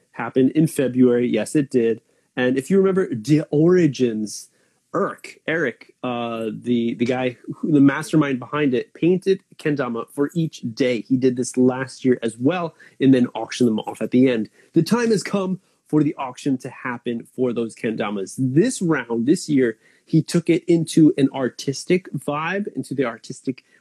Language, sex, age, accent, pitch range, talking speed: English, male, 30-49, American, 125-165 Hz, 175 wpm